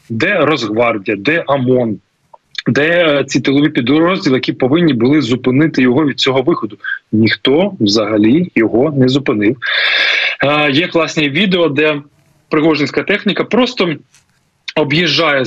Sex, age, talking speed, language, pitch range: male, 20-39, 115 wpm, Ukrainian, 130-170 Hz